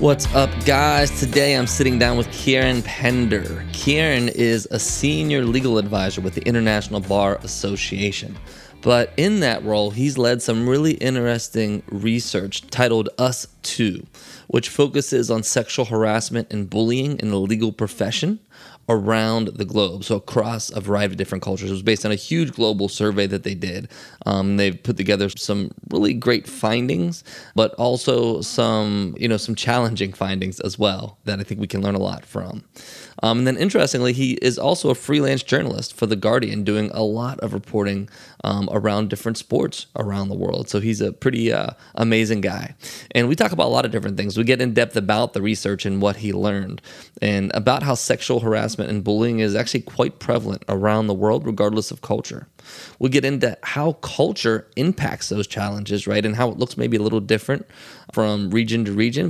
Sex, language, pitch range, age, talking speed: male, English, 105-125 Hz, 20-39, 185 wpm